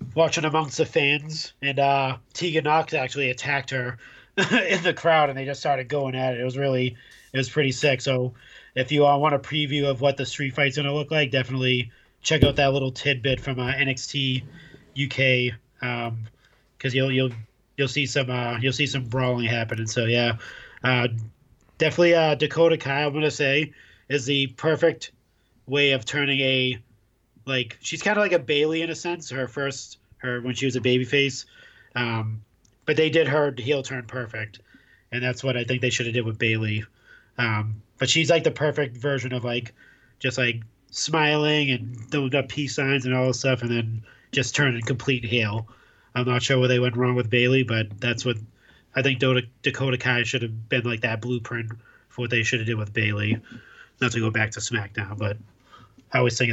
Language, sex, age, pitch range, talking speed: English, male, 30-49, 120-140 Hz, 205 wpm